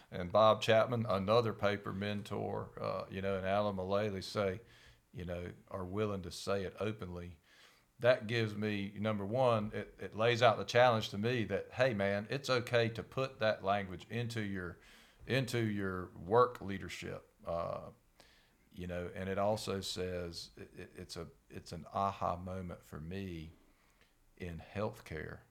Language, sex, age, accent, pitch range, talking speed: English, male, 50-69, American, 90-110 Hz, 160 wpm